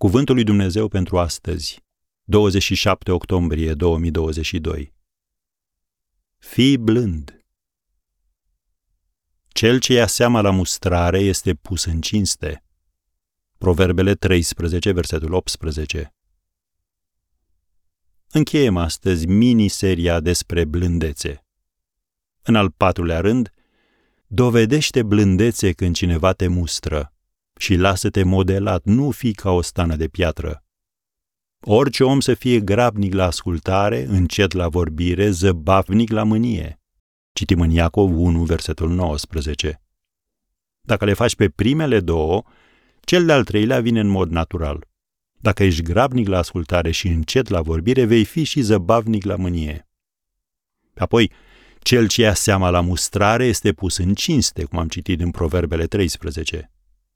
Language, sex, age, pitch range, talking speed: Romanian, male, 40-59, 80-105 Hz, 120 wpm